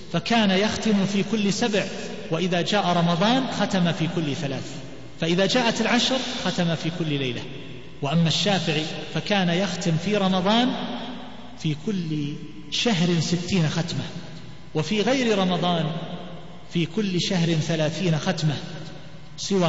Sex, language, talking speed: male, Arabic, 120 wpm